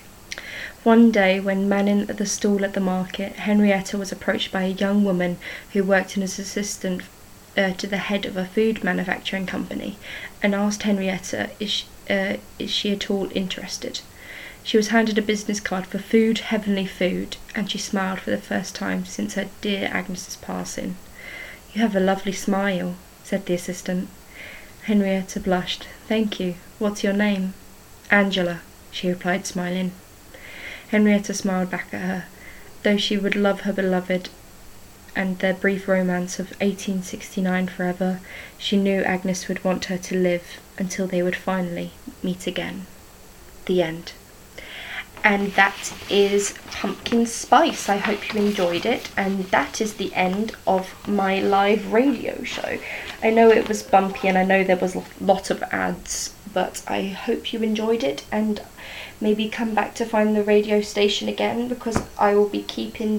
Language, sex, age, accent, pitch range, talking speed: English, female, 20-39, British, 185-210 Hz, 160 wpm